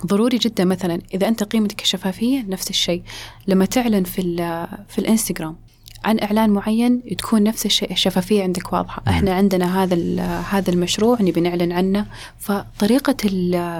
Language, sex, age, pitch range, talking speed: Arabic, female, 20-39, 175-220 Hz, 140 wpm